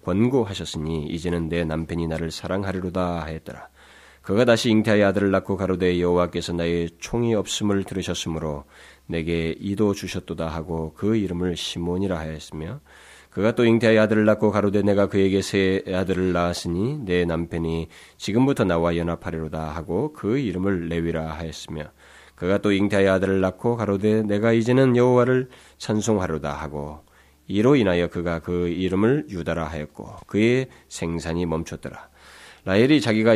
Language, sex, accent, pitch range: Korean, male, native, 80-105 Hz